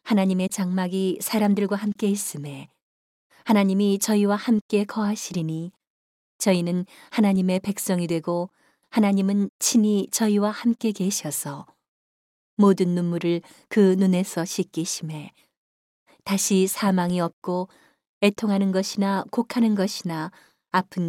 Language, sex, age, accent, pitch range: Korean, female, 40-59, native, 175-205 Hz